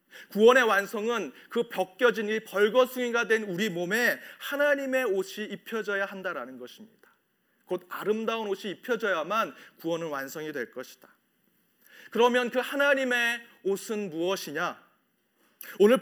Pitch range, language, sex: 185-235 Hz, Korean, male